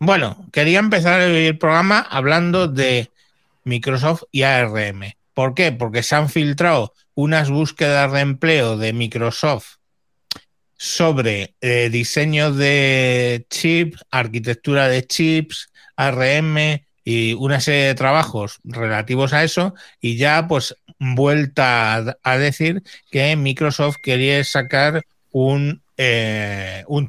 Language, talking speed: Spanish, 115 wpm